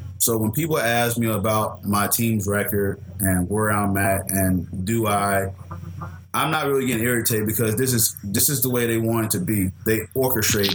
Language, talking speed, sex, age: English, 195 wpm, male, 20-39